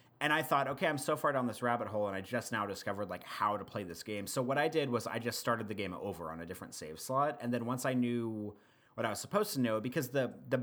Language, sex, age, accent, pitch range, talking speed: English, male, 30-49, American, 110-150 Hz, 295 wpm